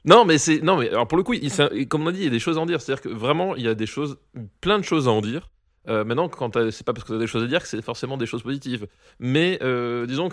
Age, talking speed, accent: 20-39, 330 wpm, French